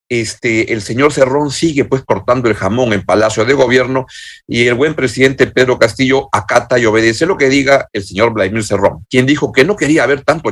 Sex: male